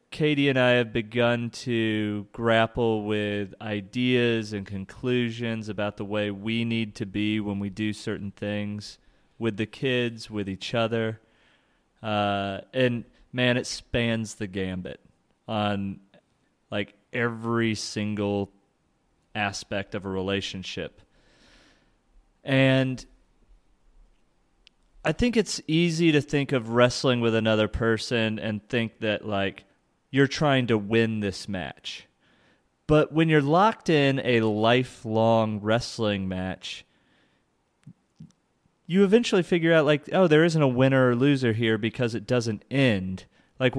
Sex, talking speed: male, 125 wpm